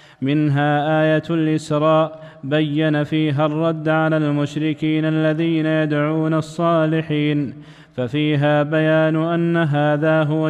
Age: 20-39